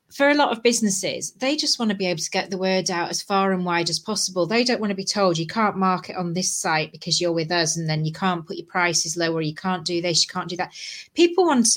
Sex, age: female, 30-49